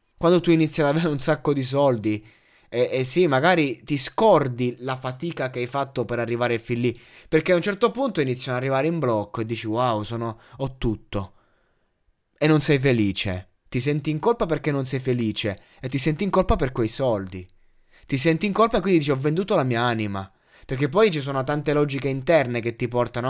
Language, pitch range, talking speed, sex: Italian, 115-150 Hz, 210 wpm, male